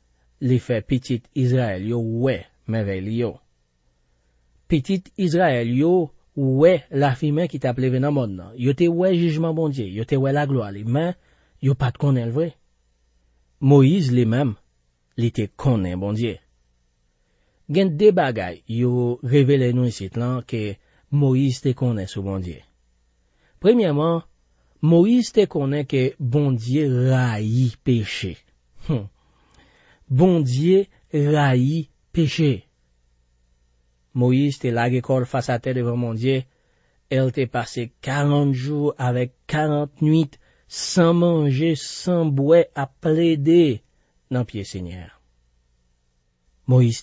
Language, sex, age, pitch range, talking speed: French, male, 40-59, 95-145 Hz, 125 wpm